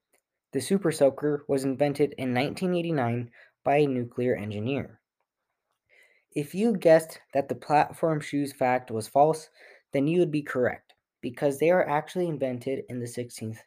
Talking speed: 150 wpm